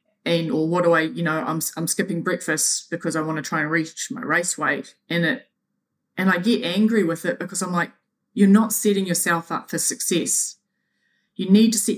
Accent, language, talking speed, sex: Australian, English, 215 wpm, female